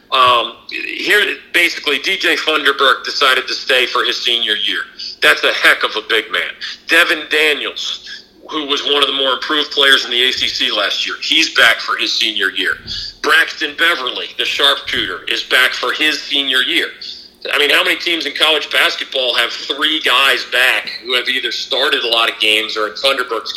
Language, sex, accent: English, male, American